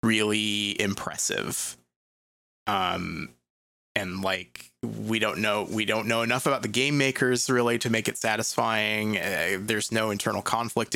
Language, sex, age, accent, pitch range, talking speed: English, male, 20-39, American, 100-130 Hz, 140 wpm